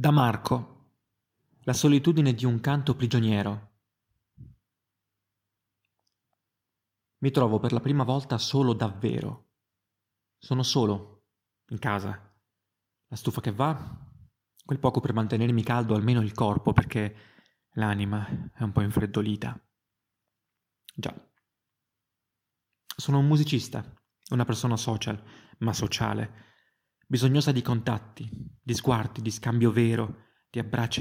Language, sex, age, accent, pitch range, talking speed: Italian, male, 30-49, native, 110-125 Hz, 110 wpm